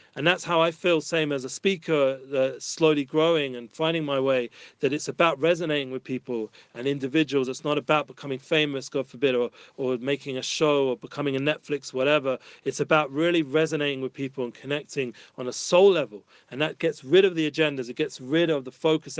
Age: 40-59